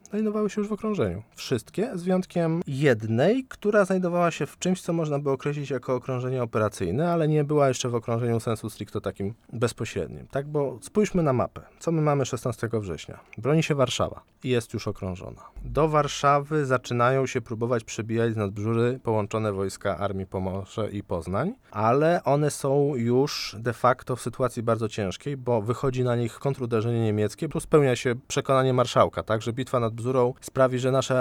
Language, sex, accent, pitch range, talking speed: Polish, male, native, 105-135 Hz, 175 wpm